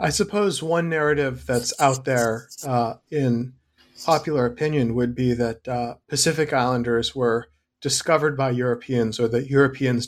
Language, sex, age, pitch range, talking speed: English, male, 40-59, 125-145 Hz, 145 wpm